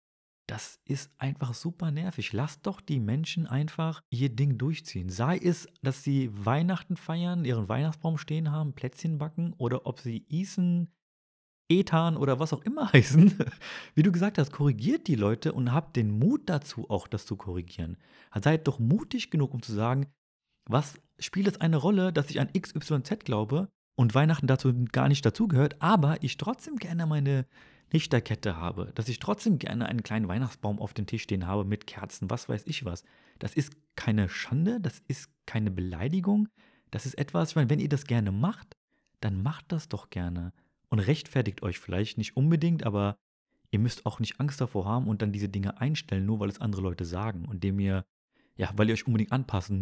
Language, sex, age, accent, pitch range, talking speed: German, male, 30-49, German, 105-160 Hz, 190 wpm